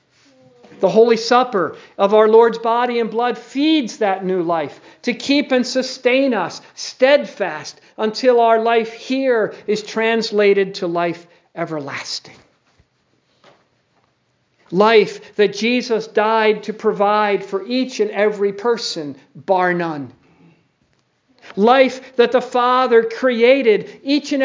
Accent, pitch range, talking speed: American, 185-250 Hz, 120 wpm